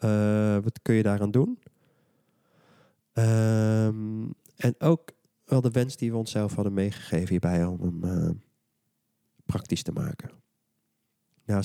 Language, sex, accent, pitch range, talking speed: Dutch, male, Dutch, 95-125 Hz, 130 wpm